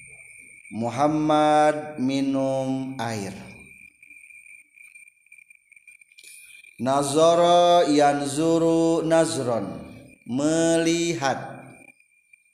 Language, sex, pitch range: Indonesian, male, 135-190 Hz